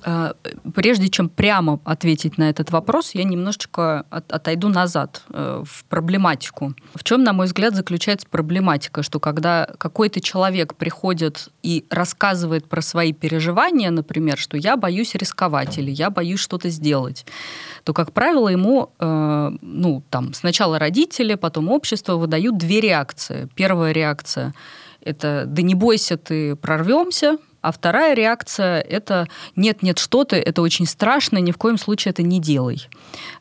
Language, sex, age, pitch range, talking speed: Russian, female, 20-39, 160-205 Hz, 140 wpm